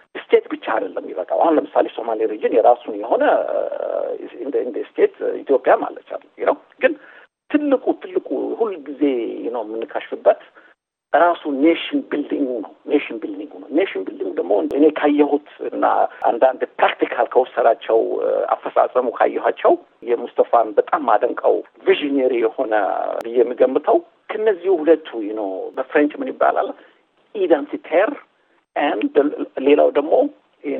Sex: male